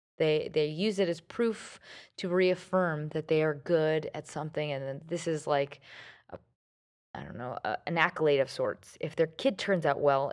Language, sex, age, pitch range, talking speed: English, female, 20-39, 150-185 Hz, 200 wpm